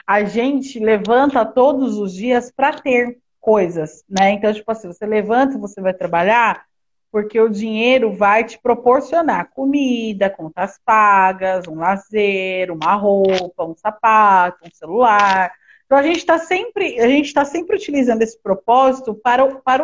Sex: female